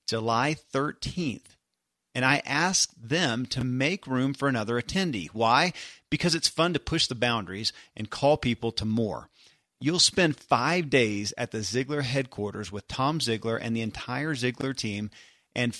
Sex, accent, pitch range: male, American, 115-155 Hz